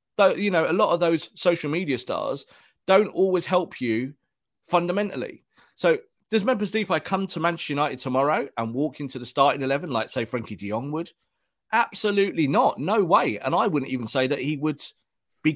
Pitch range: 120-175 Hz